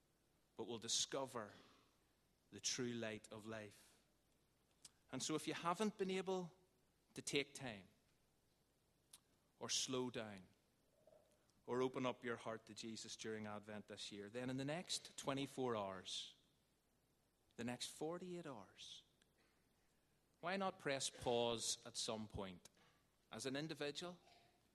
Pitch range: 115-140 Hz